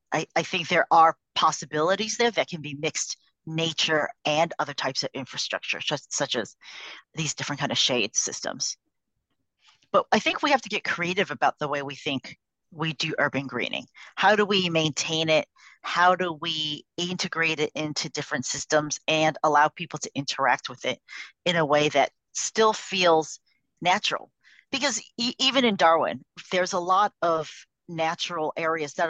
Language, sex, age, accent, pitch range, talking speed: English, female, 40-59, American, 140-165 Hz, 165 wpm